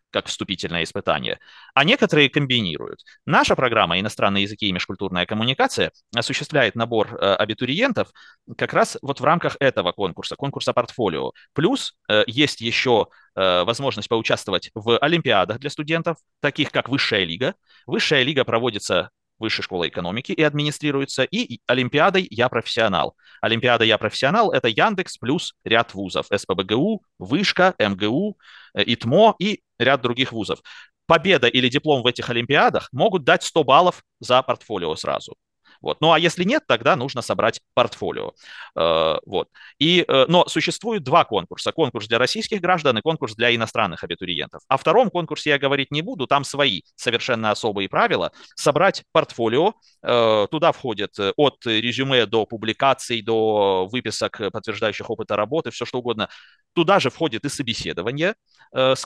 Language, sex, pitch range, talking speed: Russian, male, 115-160 Hz, 135 wpm